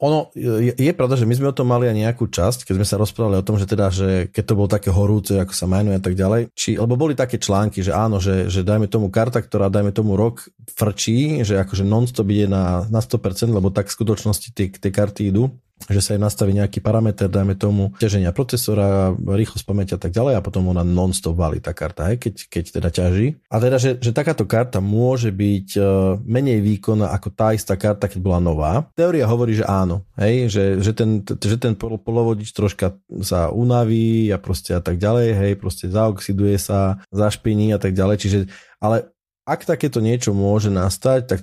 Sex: male